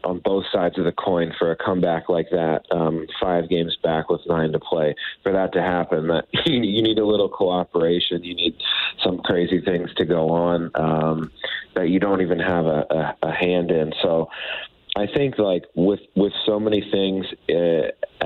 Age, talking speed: 30-49, 185 wpm